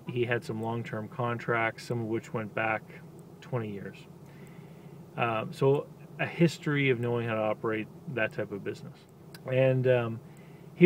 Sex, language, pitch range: male, English, 115-155 Hz